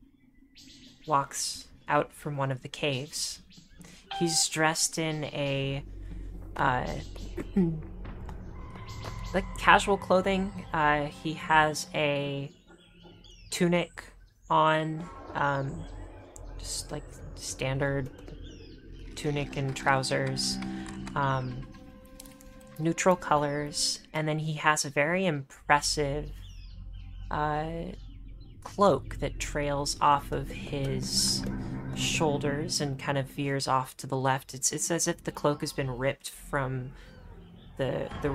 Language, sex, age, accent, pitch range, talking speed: English, female, 30-49, American, 90-150 Hz, 105 wpm